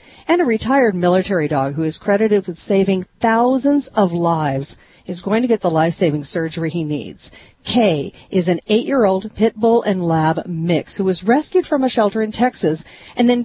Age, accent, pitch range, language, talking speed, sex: 40-59, American, 170-235 Hz, English, 185 wpm, female